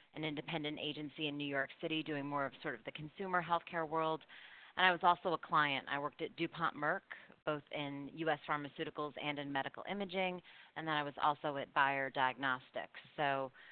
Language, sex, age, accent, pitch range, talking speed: English, female, 30-49, American, 145-165 Hz, 195 wpm